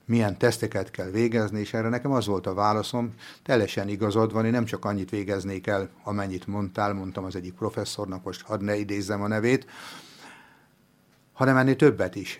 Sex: male